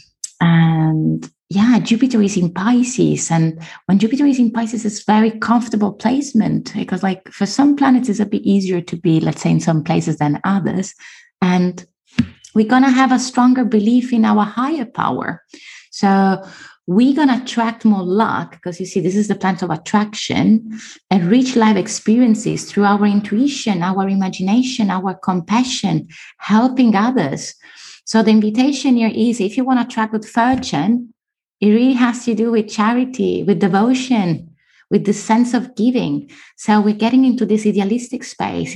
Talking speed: 165 wpm